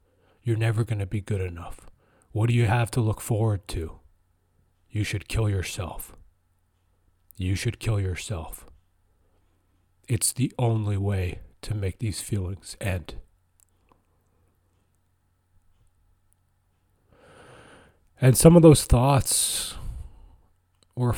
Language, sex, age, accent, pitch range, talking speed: English, male, 30-49, American, 90-115 Hz, 105 wpm